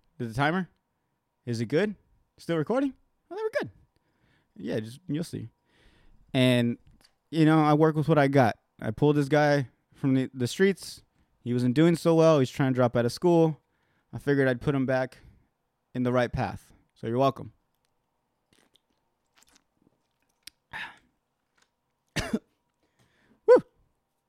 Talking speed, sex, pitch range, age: 145 wpm, male, 110-140 Hz, 20-39